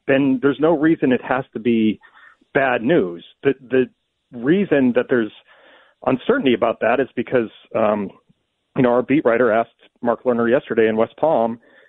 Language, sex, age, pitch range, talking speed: English, male, 40-59, 110-130 Hz, 165 wpm